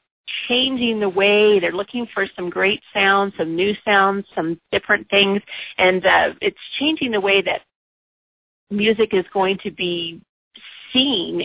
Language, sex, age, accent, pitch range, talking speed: English, female, 40-59, American, 175-230 Hz, 145 wpm